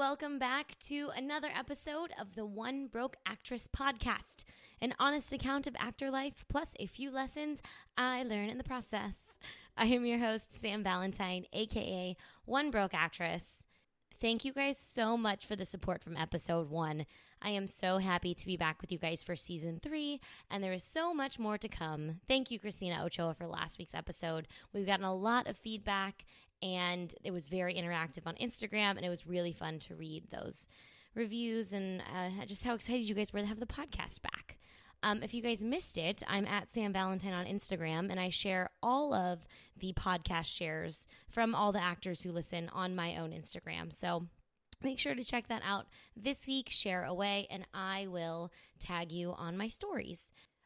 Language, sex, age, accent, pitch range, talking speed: English, female, 20-39, American, 175-240 Hz, 190 wpm